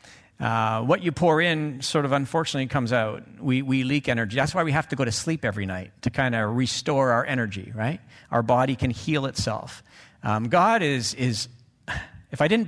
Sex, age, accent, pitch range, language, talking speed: male, 50-69, American, 115-165 Hz, English, 205 wpm